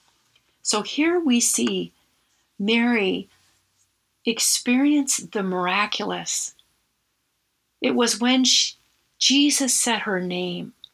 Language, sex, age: English, female, 50-69